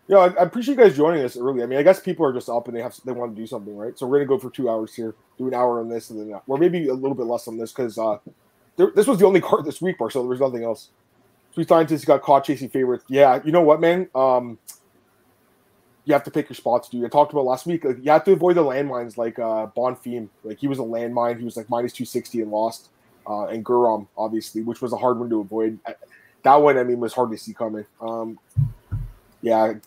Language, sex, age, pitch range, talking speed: English, male, 20-39, 115-145 Hz, 270 wpm